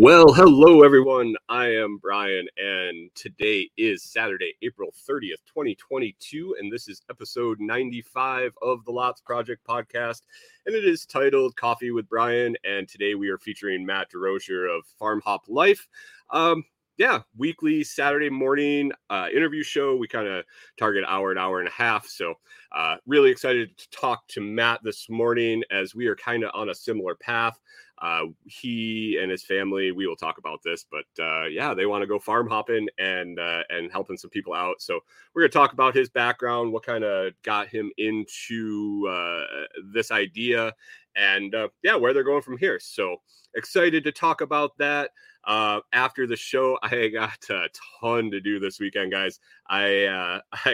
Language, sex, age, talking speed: English, male, 30-49, 180 wpm